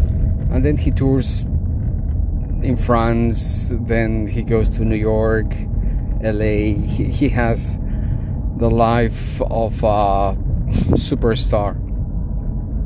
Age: 40-59